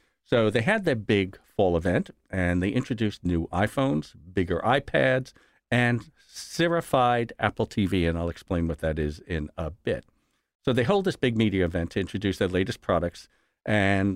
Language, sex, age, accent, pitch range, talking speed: English, male, 50-69, American, 90-120 Hz, 170 wpm